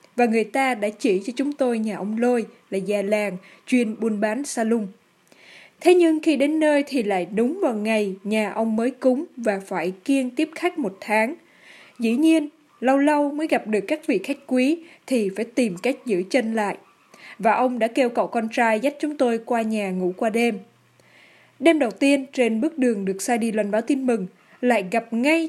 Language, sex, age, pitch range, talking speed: Vietnamese, female, 20-39, 215-275 Hz, 205 wpm